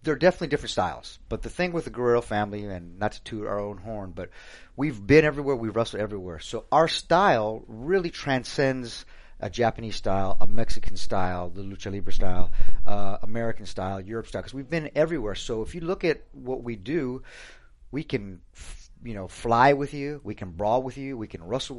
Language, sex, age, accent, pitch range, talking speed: English, male, 30-49, American, 100-130 Hz, 200 wpm